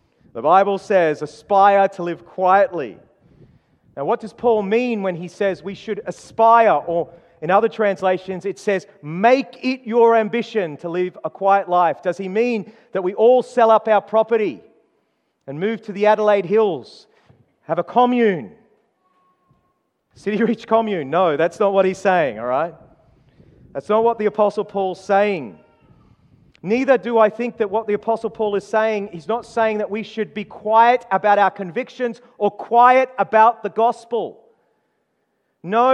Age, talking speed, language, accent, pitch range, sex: 40-59, 160 wpm, English, Australian, 195-240 Hz, male